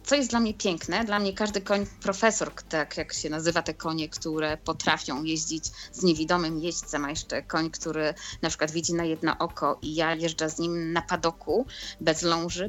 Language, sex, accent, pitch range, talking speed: Polish, female, native, 160-195 Hz, 195 wpm